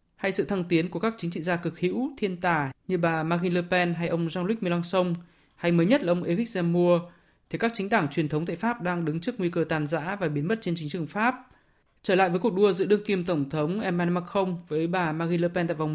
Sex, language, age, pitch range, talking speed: male, Vietnamese, 20-39, 155-180 Hz, 265 wpm